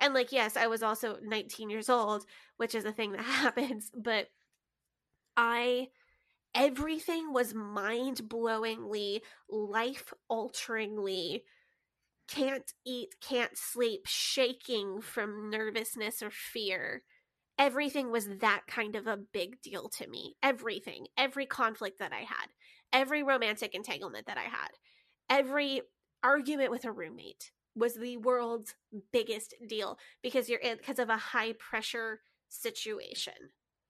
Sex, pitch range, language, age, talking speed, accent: female, 220-265 Hz, English, 20-39, 125 wpm, American